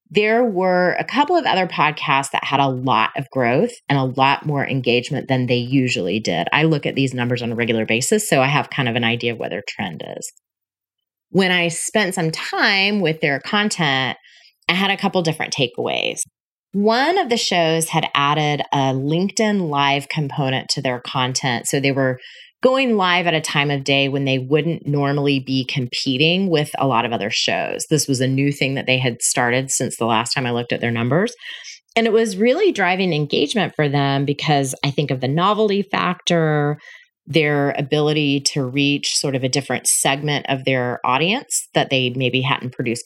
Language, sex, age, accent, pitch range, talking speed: English, female, 30-49, American, 130-175 Hz, 200 wpm